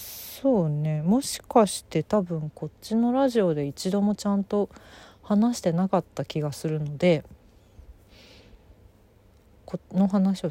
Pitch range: 135-195 Hz